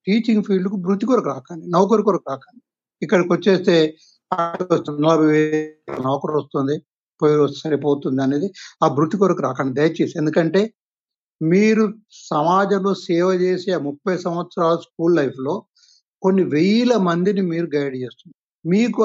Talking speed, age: 115 wpm, 60-79